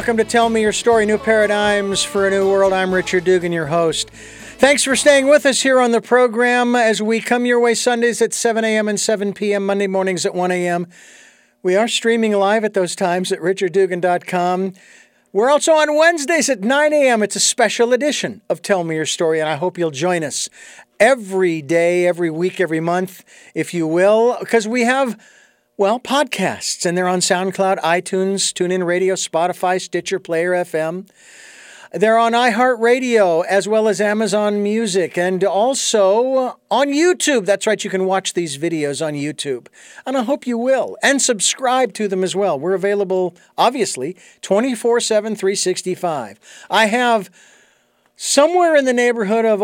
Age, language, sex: 50-69, English, male